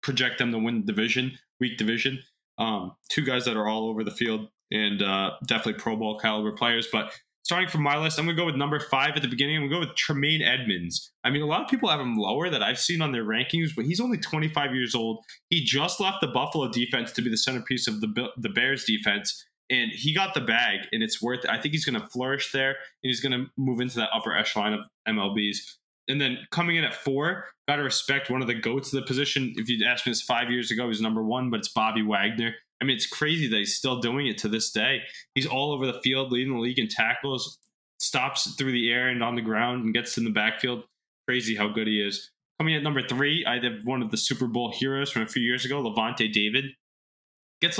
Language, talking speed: English, 250 wpm